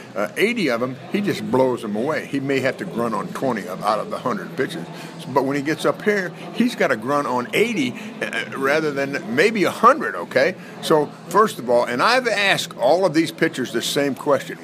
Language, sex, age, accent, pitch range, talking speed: English, male, 50-69, American, 130-180 Hz, 215 wpm